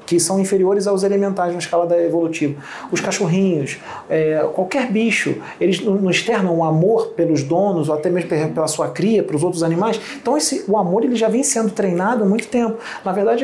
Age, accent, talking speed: 40-59, Brazilian, 210 wpm